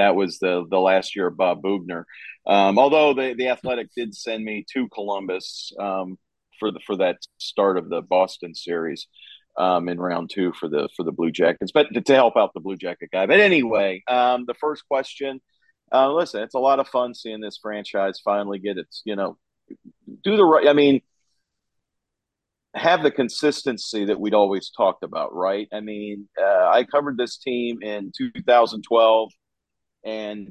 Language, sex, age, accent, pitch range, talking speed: English, male, 40-59, American, 100-120 Hz, 185 wpm